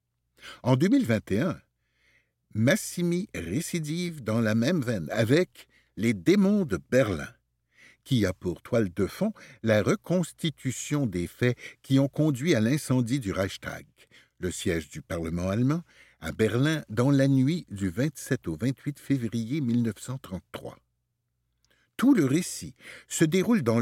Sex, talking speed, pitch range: male, 135 wpm, 105-155 Hz